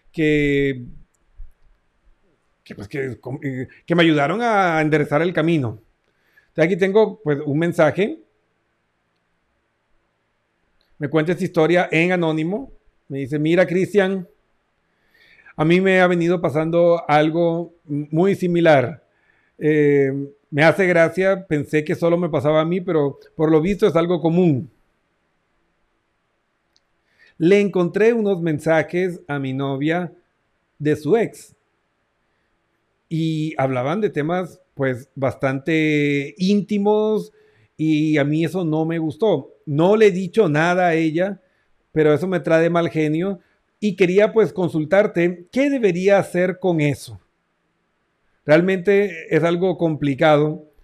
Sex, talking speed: male, 115 wpm